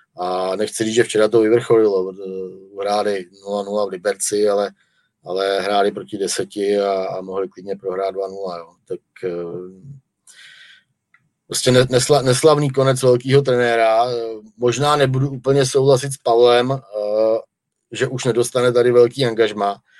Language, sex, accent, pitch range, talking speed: Czech, male, native, 105-130 Hz, 125 wpm